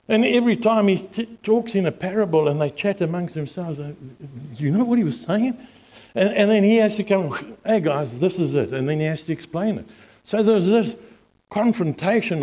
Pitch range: 175-225 Hz